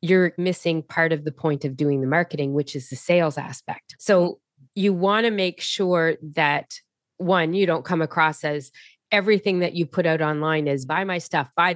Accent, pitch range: American, 150-190 Hz